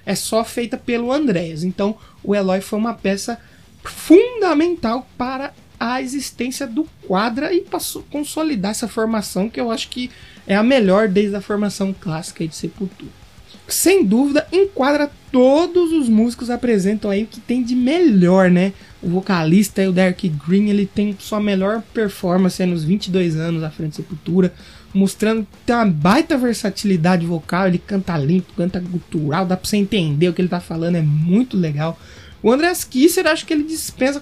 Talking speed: 170 wpm